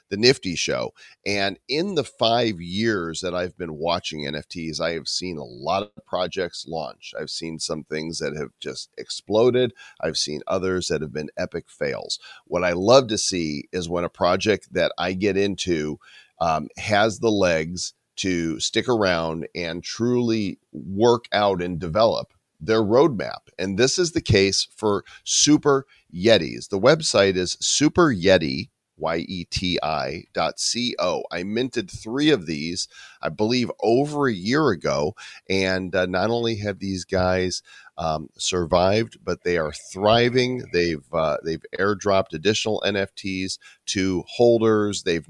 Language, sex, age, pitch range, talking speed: English, male, 40-59, 85-110 Hz, 150 wpm